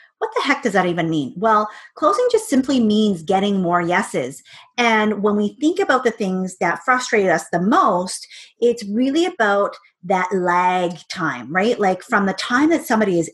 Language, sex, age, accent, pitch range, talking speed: English, female, 30-49, American, 190-245 Hz, 185 wpm